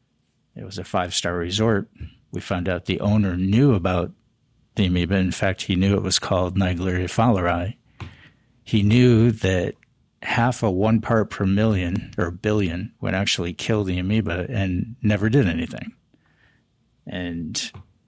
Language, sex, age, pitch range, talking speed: English, male, 60-79, 90-115 Hz, 145 wpm